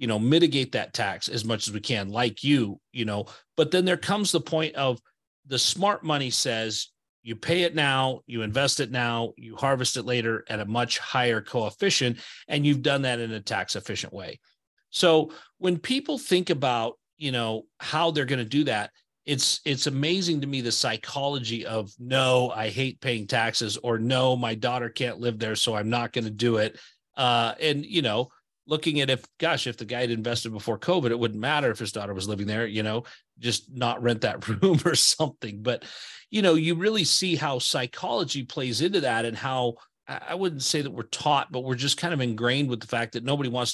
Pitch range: 115-150 Hz